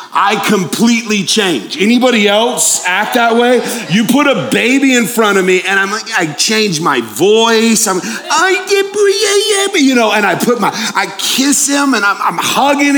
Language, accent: English, American